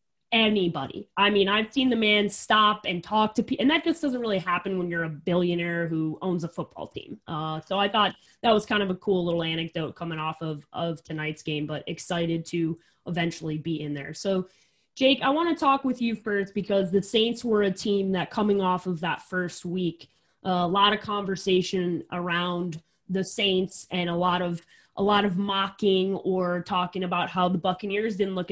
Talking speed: 205 wpm